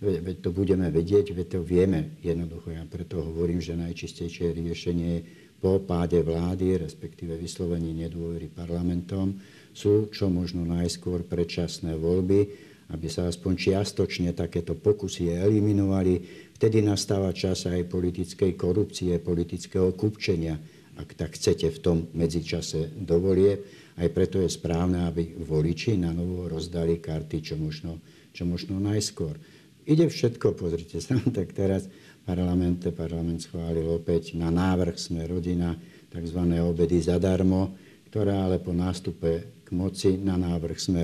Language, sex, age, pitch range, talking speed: Slovak, male, 60-79, 85-95 Hz, 125 wpm